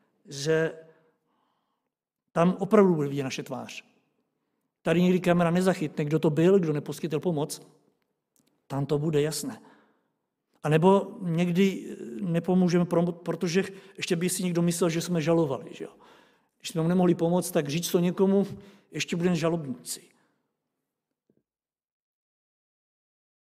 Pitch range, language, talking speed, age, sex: 150-180 Hz, Czech, 125 wpm, 50-69, male